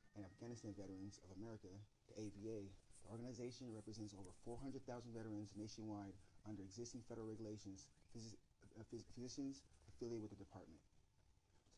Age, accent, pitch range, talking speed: 30-49, American, 95-115 Hz, 130 wpm